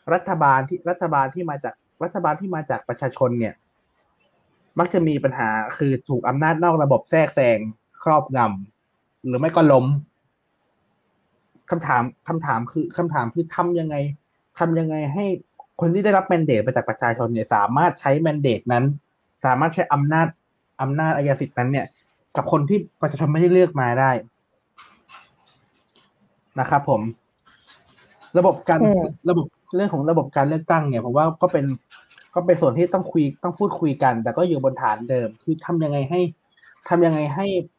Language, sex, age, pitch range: Thai, male, 20-39, 130-175 Hz